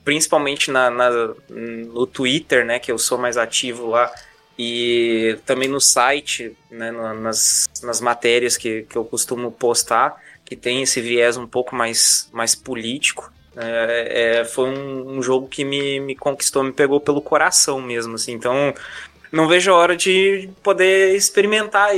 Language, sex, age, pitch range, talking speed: Portuguese, male, 20-39, 120-150 Hz, 160 wpm